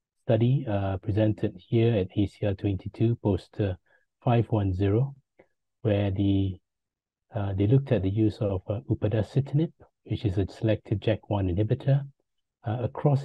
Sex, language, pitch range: male, English, 95-115 Hz